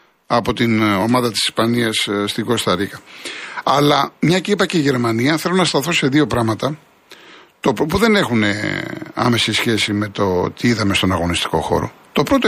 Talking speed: 170 wpm